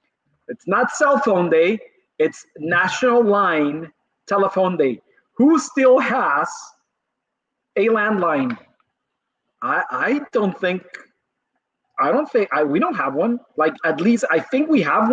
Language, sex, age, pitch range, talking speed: English, male, 30-49, 165-260 Hz, 135 wpm